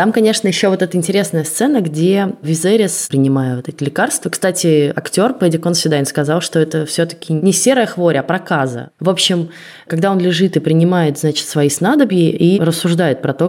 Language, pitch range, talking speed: Russian, 140-175 Hz, 180 wpm